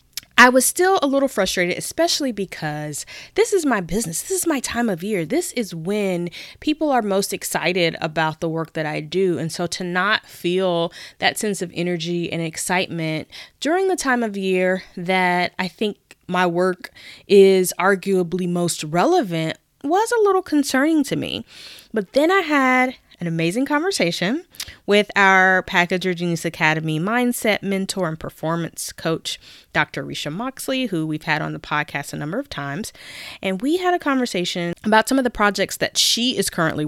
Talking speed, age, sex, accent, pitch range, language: 170 wpm, 20-39, female, American, 170-255 Hz, English